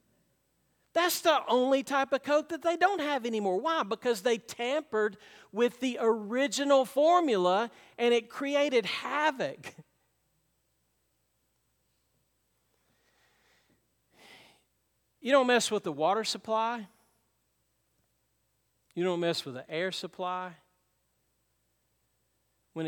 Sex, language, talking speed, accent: male, English, 100 wpm, American